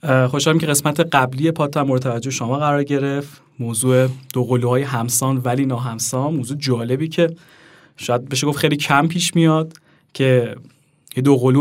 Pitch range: 125-155 Hz